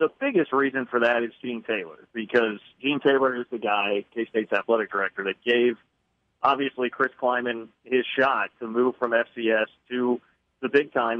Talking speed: 170 wpm